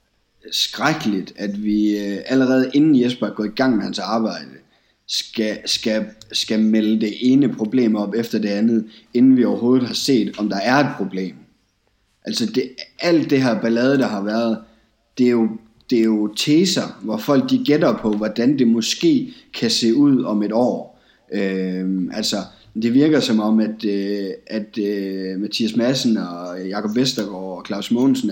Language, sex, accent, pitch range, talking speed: Danish, male, native, 100-125 Hz, 160 wpm